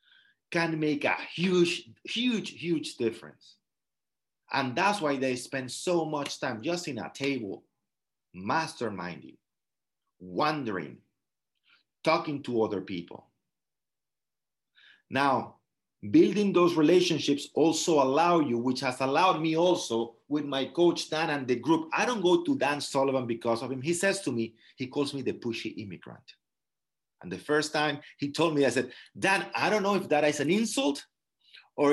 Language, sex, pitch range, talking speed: English, male, 135-195 Hz, 155 wpm